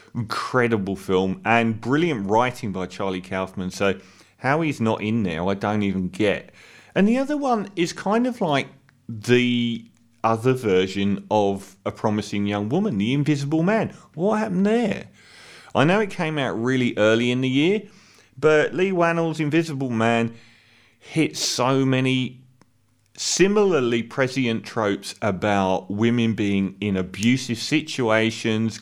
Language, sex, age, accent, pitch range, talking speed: English, male, 30-49, British, 105-150 Hz, 140 wpm